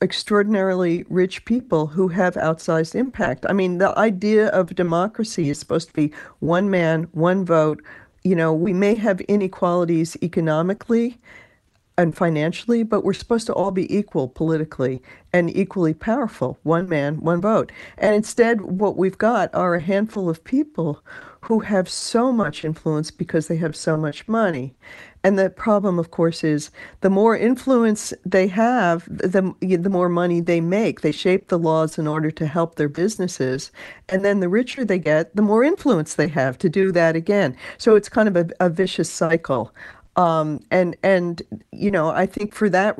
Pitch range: 160-205 Hz